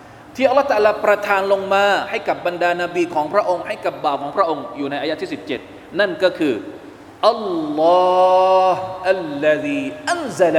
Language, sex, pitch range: Thai, male, 160-245 Hz